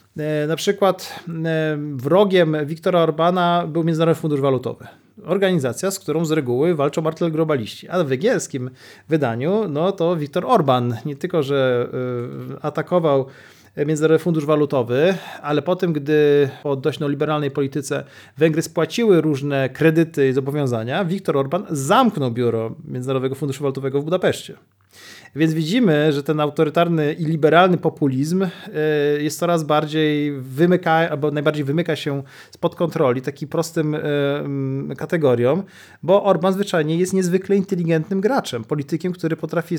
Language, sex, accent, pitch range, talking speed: Polish, male, native, 140-170 Hz, 130 wpm